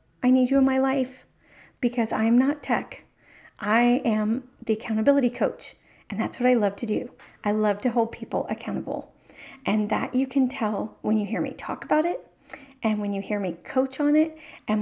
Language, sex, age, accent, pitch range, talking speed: English, female, 40-59, American, 215-260 Hz, 200 wpm